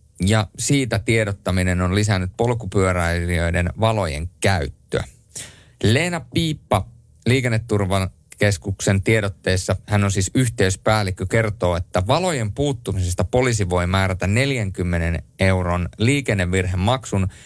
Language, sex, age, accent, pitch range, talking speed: Finnish, male, 30-49, native, 95-115 Hz, 90 wpm